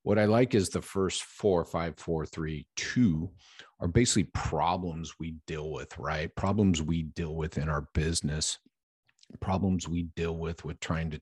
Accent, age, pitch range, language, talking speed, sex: American, 50-69, 80-95 Hz, English, 170 wpm, male